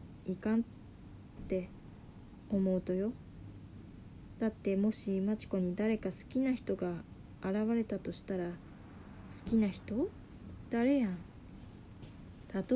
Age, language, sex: 20-39, Japanese, female